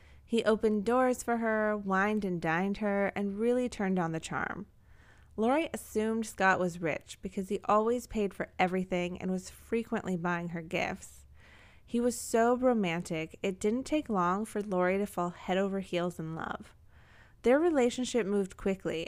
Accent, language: American, English